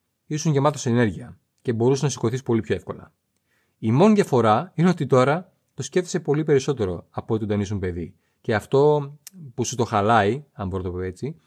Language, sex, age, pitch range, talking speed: Greek, male, 30-49, 110-150 Hz, 190 wpm